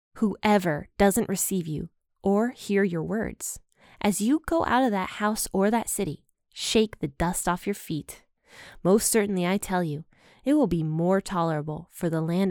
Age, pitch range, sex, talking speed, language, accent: 20-39, 170-230 Hz, female, 175 wpm, English, American